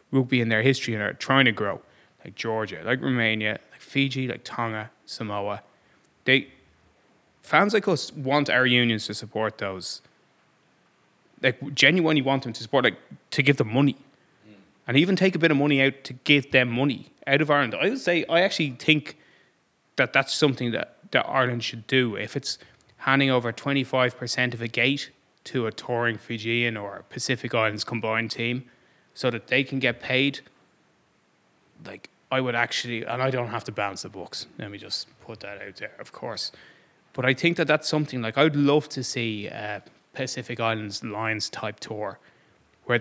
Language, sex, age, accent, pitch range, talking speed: English, male, 20-39, Irish, 110-135 Hz, 180 wpm